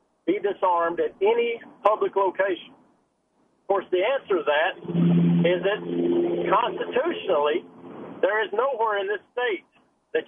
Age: 50-69